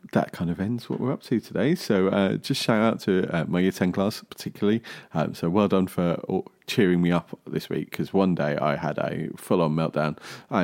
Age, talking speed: 30-49, 225 wpm